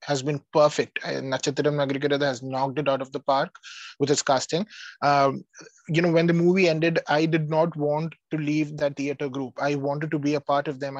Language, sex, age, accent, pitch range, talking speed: English, male, 20-39, Indian, 140-160 Hz, 215 wpm